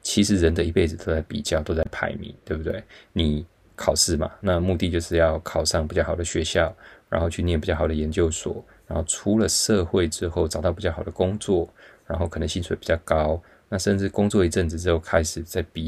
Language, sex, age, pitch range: Chinese, male, 20-39, 80-100 Hz